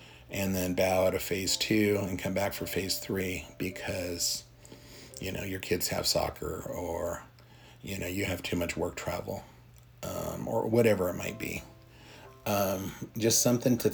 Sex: male